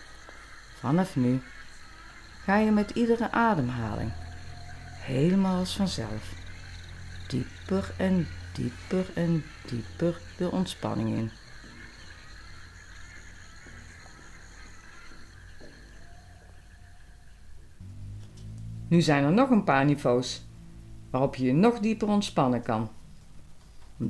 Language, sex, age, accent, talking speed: Dutch, female, 50-69, Dutch, 80 wpm